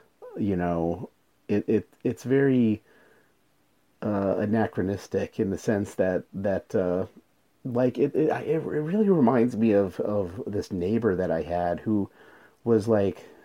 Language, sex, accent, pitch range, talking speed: English, male, American, 100-115 Hz, 140 wpm